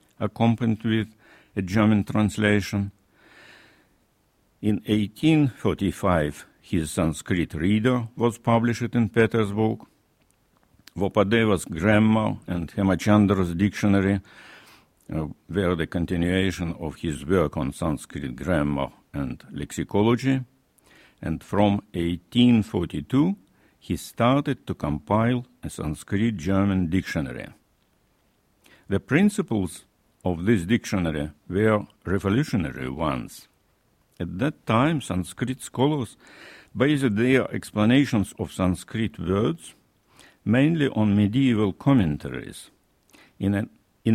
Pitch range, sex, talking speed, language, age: 90-120 Hz, male, 90 wpm, French, 60-79